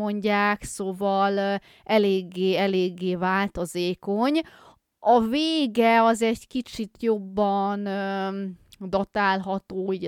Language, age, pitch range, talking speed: Hungarian, 20-39, 175-220 Hz, 75 wpm